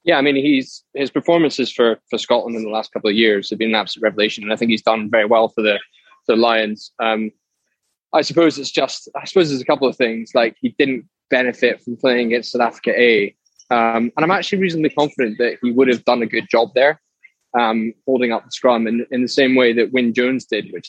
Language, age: English, 10-29